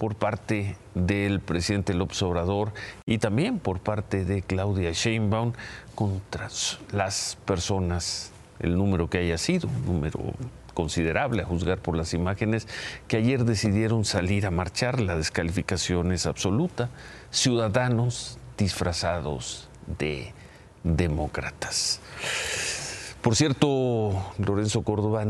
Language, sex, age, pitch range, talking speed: Spanish, male, 50-69, 90-110 Hz, 110 wpm